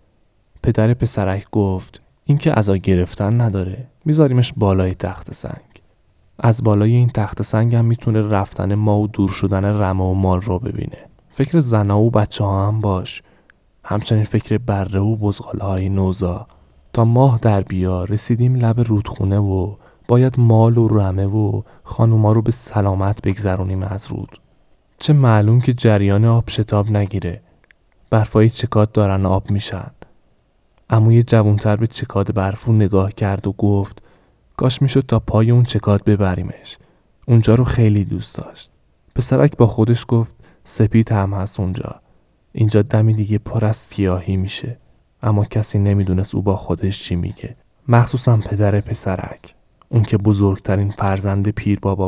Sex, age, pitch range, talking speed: male, 20-39, 95-115 Hz, 145 wpm